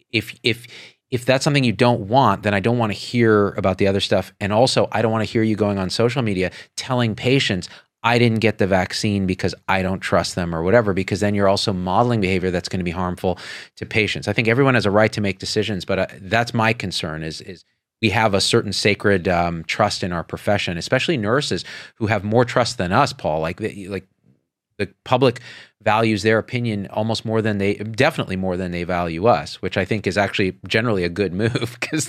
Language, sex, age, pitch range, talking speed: English, male, 40-59, 95-120 Hz, 215 wpm